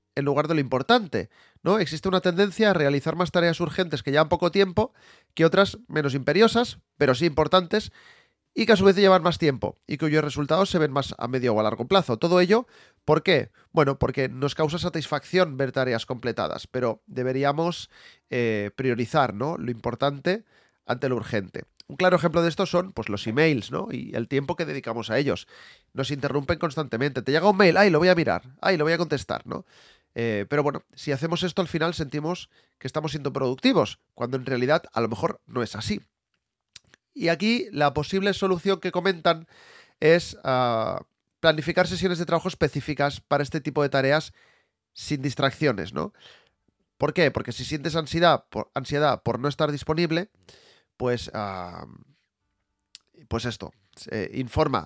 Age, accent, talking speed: 30-49, Spanish, 180 wpm